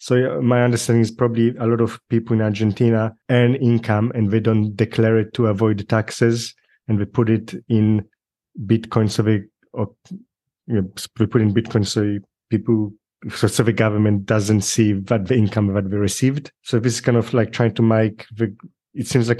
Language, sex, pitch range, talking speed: English, male, 110-125 Hz, 185 wpm